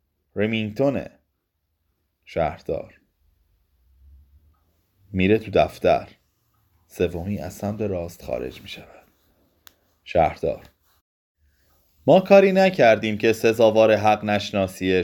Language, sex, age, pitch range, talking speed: Persian, male, 30-49, 90-120 Hz, 75 wpm